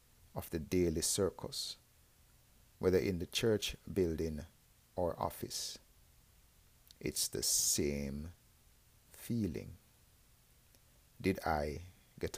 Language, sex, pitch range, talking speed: English, male, 75-100 Hz, 85 wpm